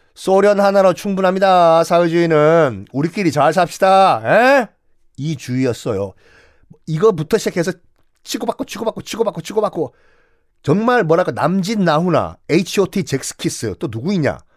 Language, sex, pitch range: Korean, male, 145-225 Hz